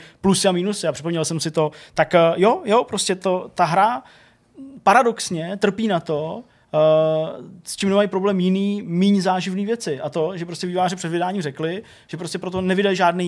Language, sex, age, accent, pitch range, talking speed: Czech, male, 20-39, native, 160-190 Hz, 175 wpm